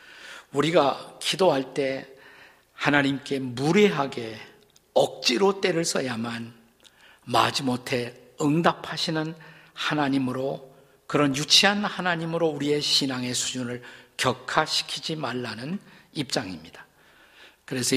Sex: male